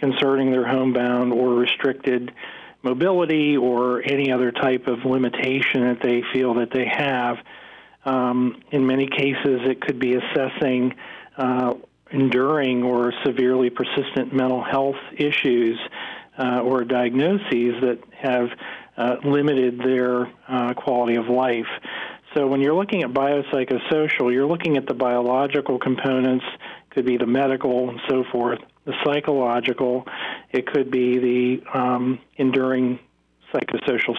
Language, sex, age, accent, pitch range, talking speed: English, male, 40-59, American, 125-135 Hz, 130 wpm